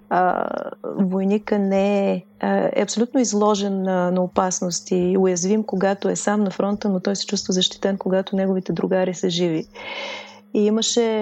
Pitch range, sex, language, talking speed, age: 190-215 Hz, female, Bulgarian, 155 wpm, 30-49